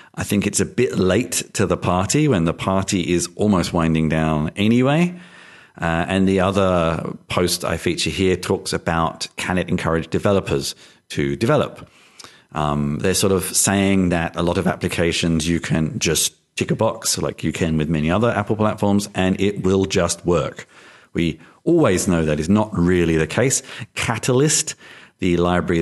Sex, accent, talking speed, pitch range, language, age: male, British, 170 wpm, 85-110 Hz, English, 40-59